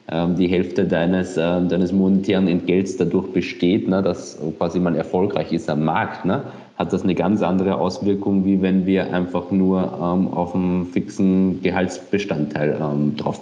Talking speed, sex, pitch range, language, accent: 155 wpm, male, 85-100 Hz, German, German